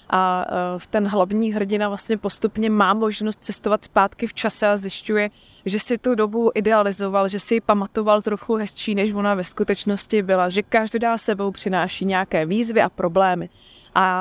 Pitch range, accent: 190-215 Hz, native